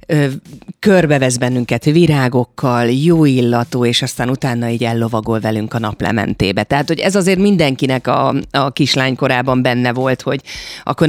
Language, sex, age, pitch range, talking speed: Hungarian, female, 30-49, 125-160 Hz, 140 wpm